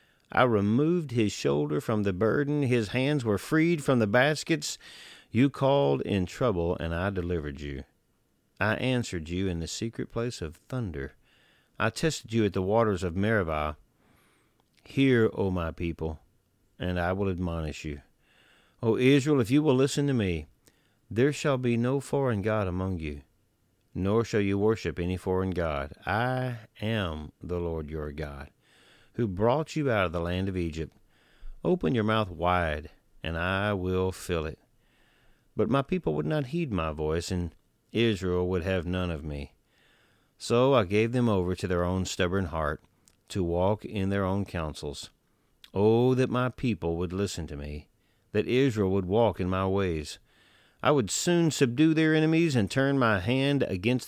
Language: English